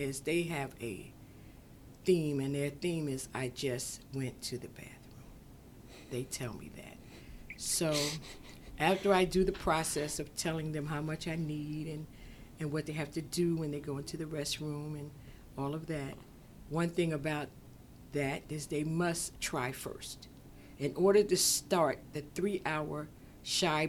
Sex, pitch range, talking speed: female, 130-160 Hz, 165 wpm